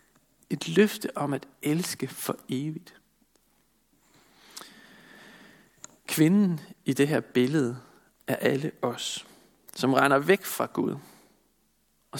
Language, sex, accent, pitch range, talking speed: Danish, male, native, 140-180 Hz, 105 wpm